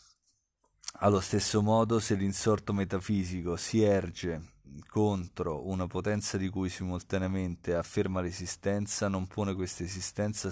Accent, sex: native, male